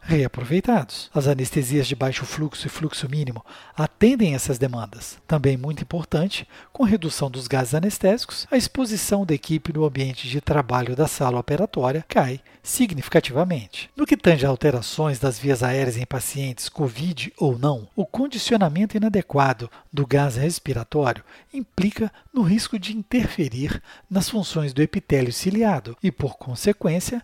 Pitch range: 135-180 Hz